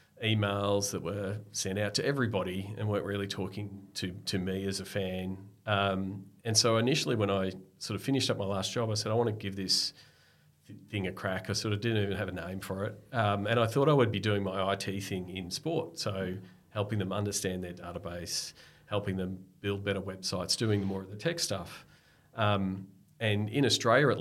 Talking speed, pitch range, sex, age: 215 wpm, 95-110 Hz, male, 40-59